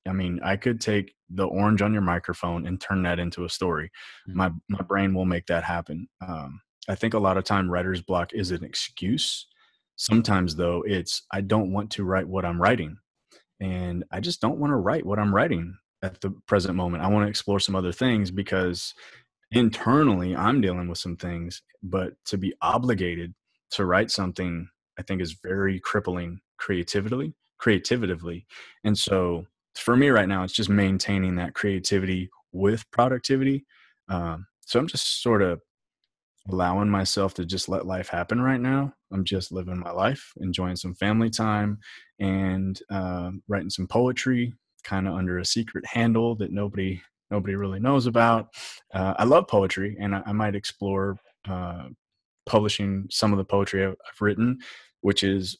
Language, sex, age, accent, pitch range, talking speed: English, male, 20-39, American, 90-105 Hz, 175 wpm